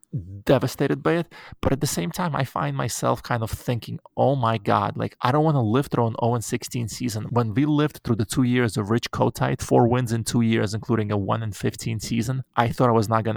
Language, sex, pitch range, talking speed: English, male, 115-140 Hz, 235 wpm